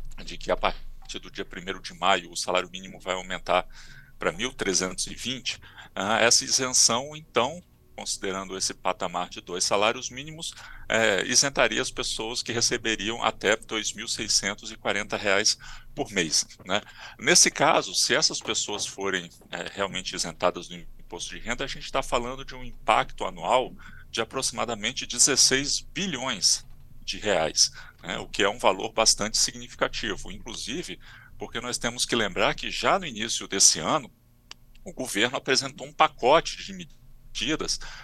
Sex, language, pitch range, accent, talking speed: male, Portuguese, 100-130 Hz, Brazilian, 150 wpm